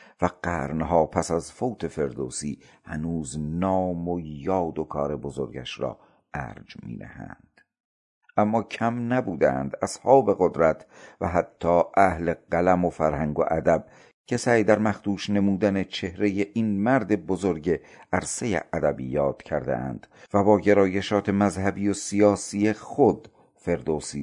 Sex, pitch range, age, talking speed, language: male, 80-105 Hz, 50-69, 120 wpm, Persian